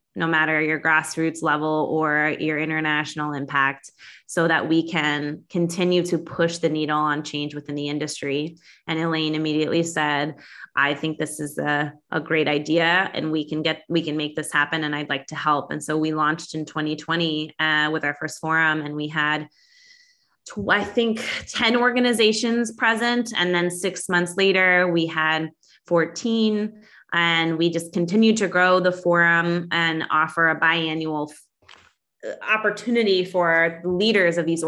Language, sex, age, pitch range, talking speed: English, female, 20-39, 155-180 Hz, 165 wpm